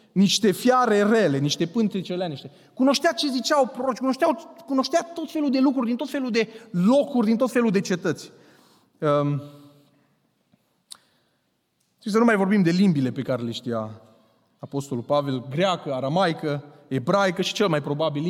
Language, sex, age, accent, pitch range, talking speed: Romanian, male, 30-49, native, 160-245 Hz, 145 wpm